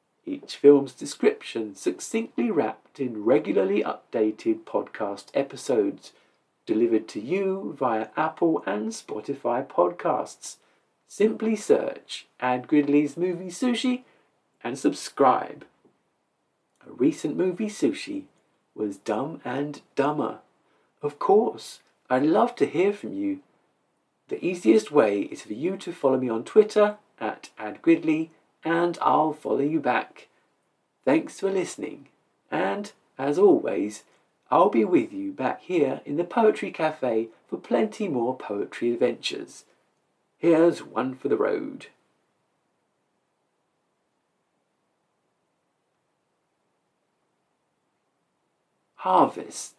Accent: British